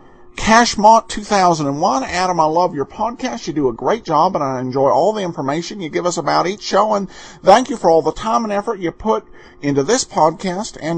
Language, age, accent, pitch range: English, 50-69, American, 155-225 Hz